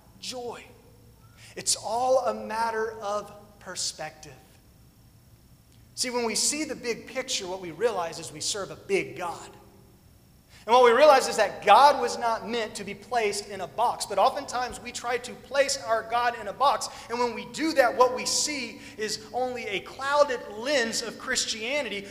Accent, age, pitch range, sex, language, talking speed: American, 30-49, 215-260 Hz, male, English, 175 wpm